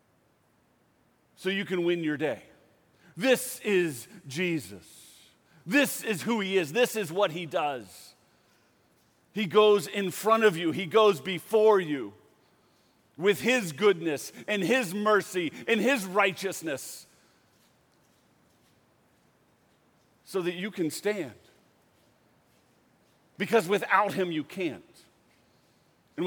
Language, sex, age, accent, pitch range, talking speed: English, male, 40-59, American, 145-200 Hz, 110 wpm